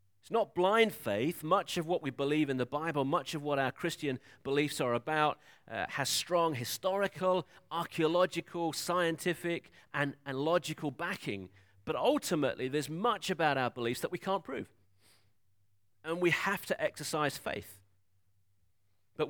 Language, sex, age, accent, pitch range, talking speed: English, male, 40-59, British, 115-170 Hz, 145 wpm